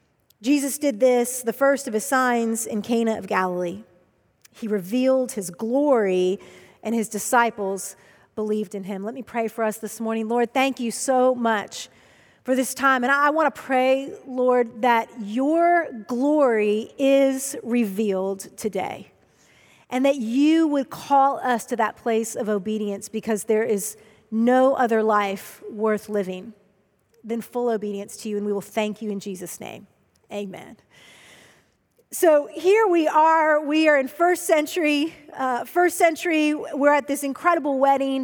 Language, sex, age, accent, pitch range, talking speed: English, female, 40-59, American, 220-285 Hz, 155 wpm